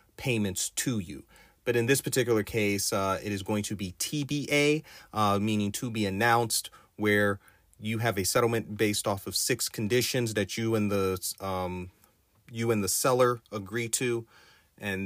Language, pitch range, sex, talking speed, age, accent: English, 100-120 Hz, male, 165 wpm, 30-49, American